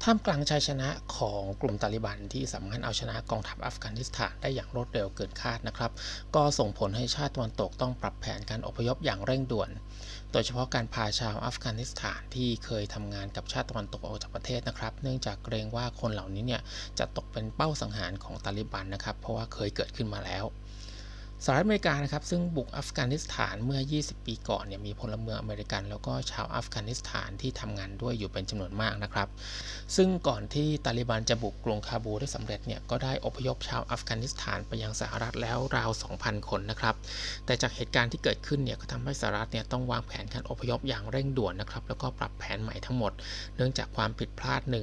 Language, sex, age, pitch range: Thai, male, 20-39, 105-125 Hz